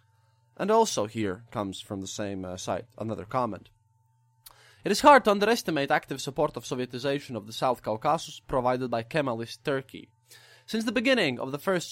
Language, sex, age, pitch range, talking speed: English, male, 20-39, 125-200 Hz, 170 wpm